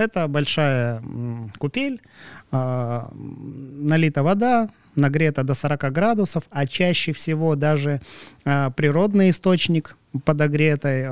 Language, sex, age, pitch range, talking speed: Russian, male, 30-49, 130-165 Hz, 85 wpm